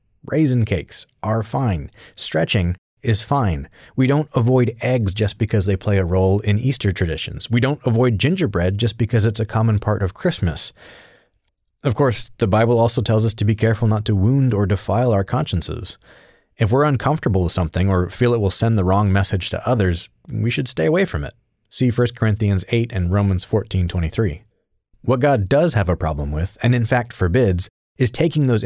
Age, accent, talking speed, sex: 30-49, American, 190 wpm, male